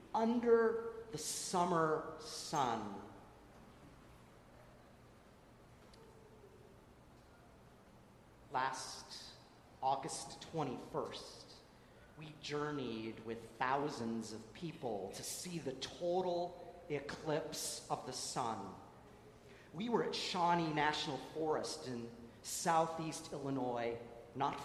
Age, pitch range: 40-59, 150-195 Hz